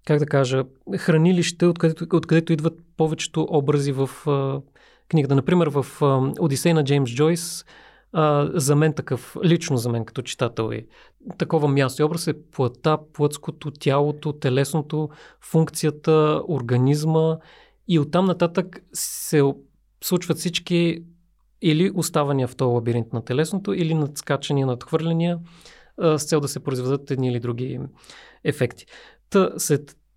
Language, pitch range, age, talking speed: Bulgarian, 130-160 Hz, 30-49, 130 wpm